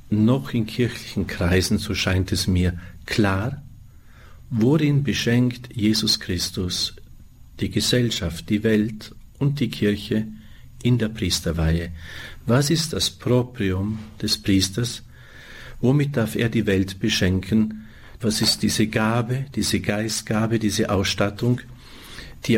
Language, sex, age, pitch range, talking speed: German, male, 50-69, 95-115 Hz, 115 wpm